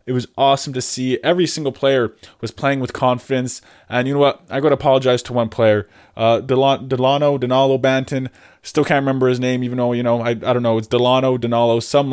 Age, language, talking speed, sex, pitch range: 20-39, English, 220 wpm, male, 120-140 Hz